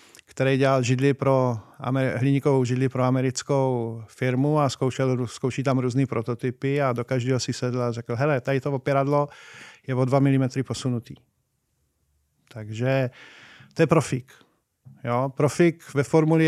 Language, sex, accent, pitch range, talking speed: Czech, male, native, 125-145 Hz, 145 wpm